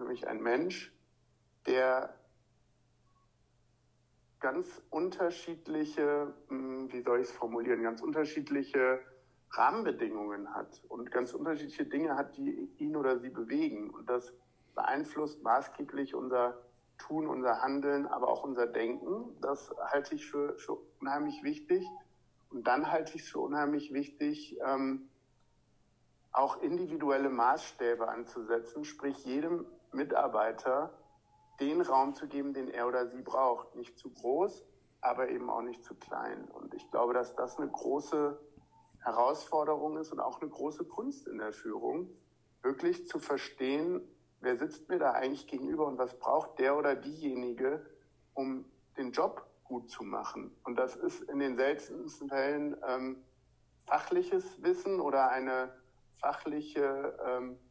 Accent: German